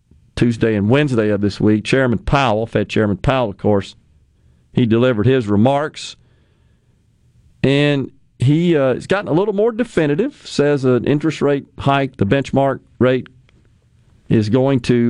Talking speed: 145 wpm